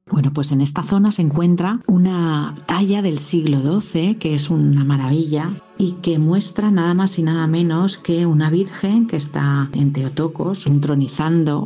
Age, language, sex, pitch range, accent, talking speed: 40-59, Spanish, female, 140-170 Hz, Spanish, 165 wpm